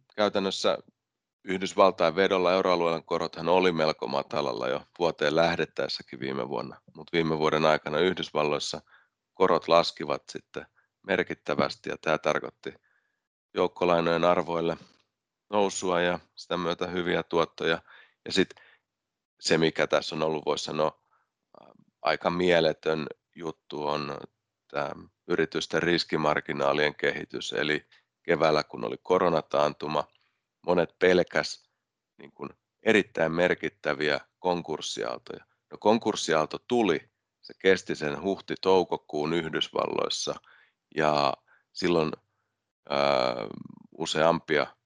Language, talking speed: Finnish, 100 wpm